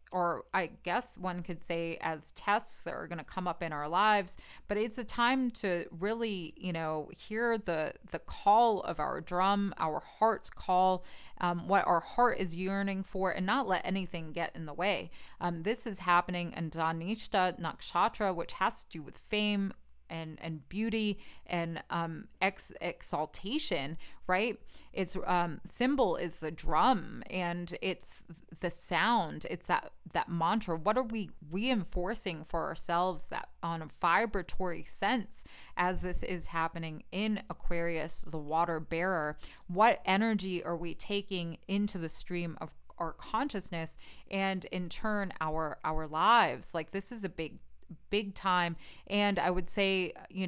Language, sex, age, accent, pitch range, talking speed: English, female, 30-49, American, 165-200 Hz, 160 wpm